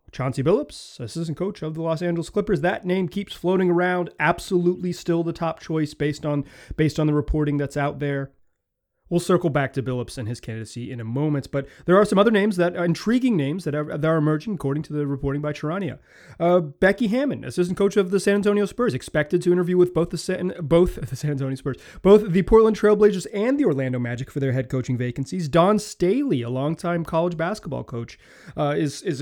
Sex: male